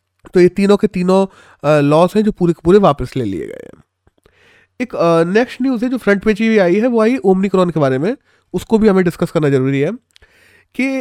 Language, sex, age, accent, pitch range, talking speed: Hindi, male, 20-39, native, 155-210 Hz, 215 wpm